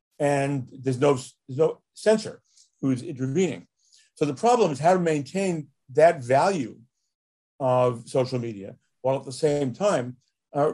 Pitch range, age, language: 130-160 Hz, 60-79, English